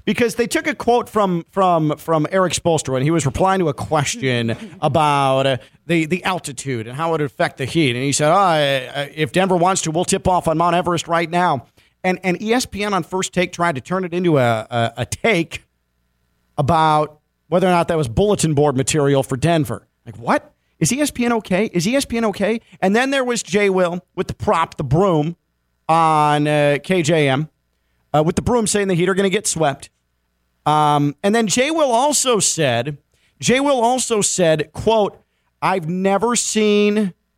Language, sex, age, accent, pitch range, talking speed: English, male, 40-59, American, 135-195 Hz, 195 wpm